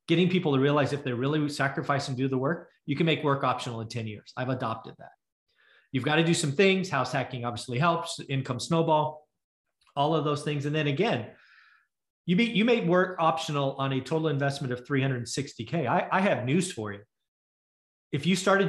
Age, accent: 30-49, American